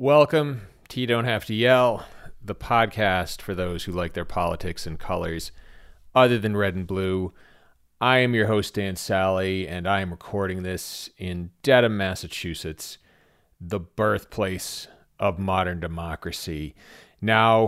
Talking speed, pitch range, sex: 145 wpm, 95-120 Hz, male